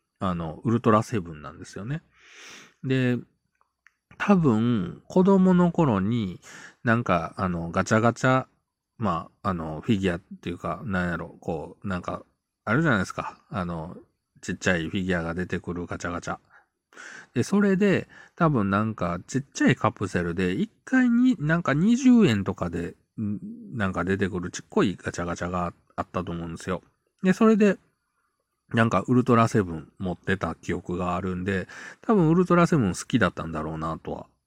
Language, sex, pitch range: Japanese, male, 85-135 Hz